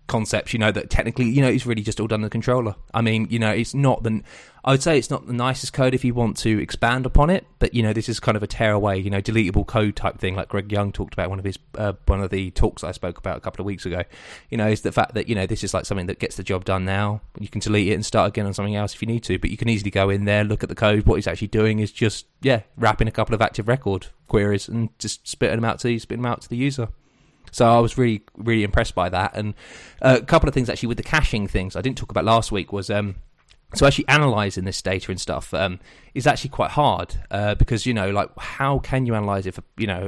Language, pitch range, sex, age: English, 100-115 Hz, male, 20-39